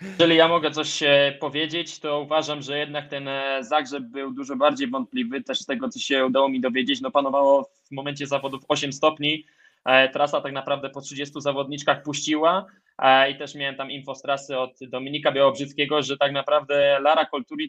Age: 20-39